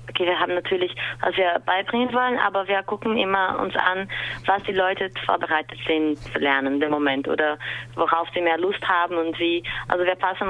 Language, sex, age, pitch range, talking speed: German, female, 20-39, 165-195 Hz, 195 wpm